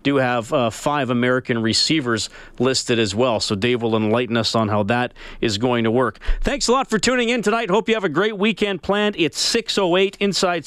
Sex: male